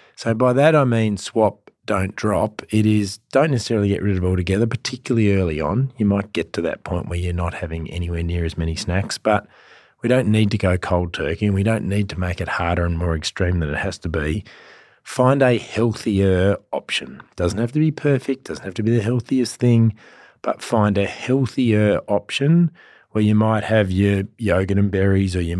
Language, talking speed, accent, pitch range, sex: English, 210 wpm, Australian, 95-110 Hz, male